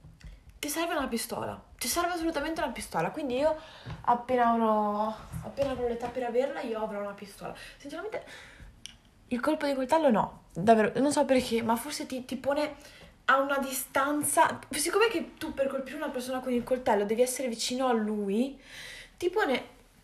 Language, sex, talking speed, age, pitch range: Italian, female, 170 wpm, 20-39, 235-315 Hz